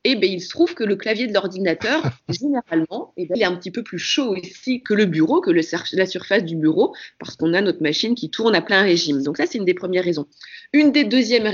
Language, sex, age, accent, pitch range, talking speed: French, female, 30-49, French, 180-265 Hz, 265 wpm